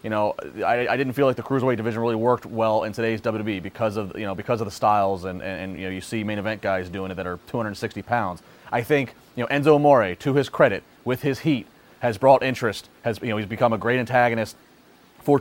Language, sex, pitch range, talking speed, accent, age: English, male, 115-135 Hz, 250 wpm, American, 30-49